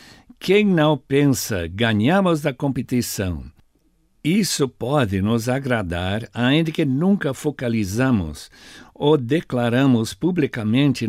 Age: 60-79